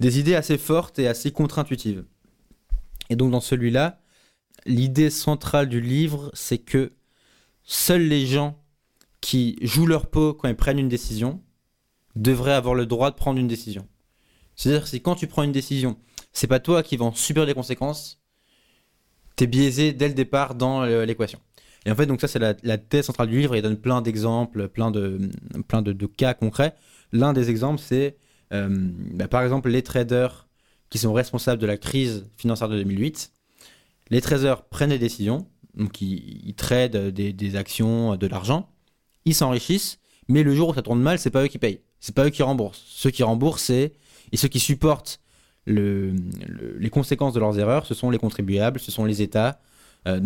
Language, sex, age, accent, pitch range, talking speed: French, male, 20-39, French, 110-145 Hz, 190 wpm